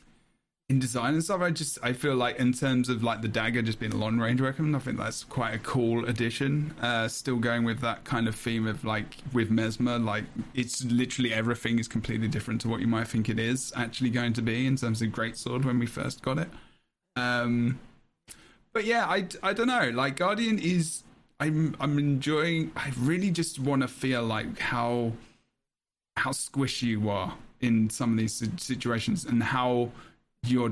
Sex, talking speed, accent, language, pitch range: male, 195 wpm, British, English, 115-135 Hz